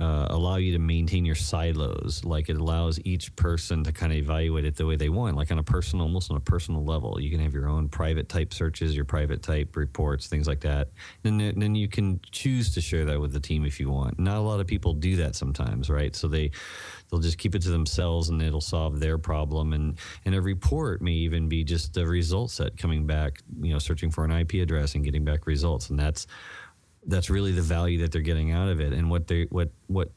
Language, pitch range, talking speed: English, 75-90 Hz, 250 wpm